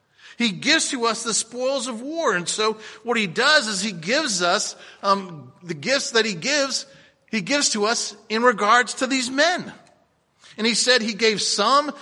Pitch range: 210-265 Hz